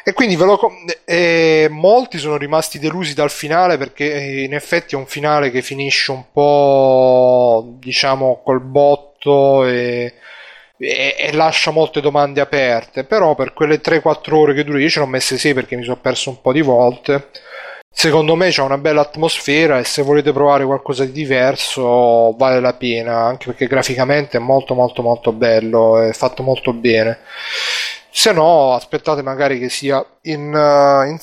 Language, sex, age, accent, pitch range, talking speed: Italian, male, 30-49, native, 130-155 Hz, 170 wpm